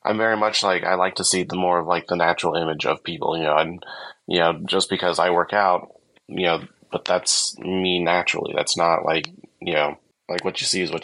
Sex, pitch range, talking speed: male, 85-100 Hz, 240 wpm